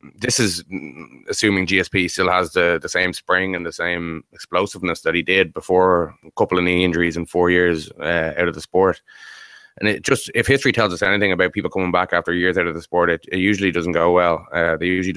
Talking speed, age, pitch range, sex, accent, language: 230 wpm, 20-39, 90-100 Hz, male, Irish, English